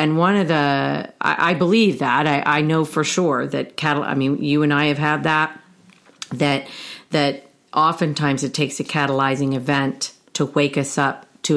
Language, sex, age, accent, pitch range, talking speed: English, female, 40-59, American, 135-165 Hz, 185 wpm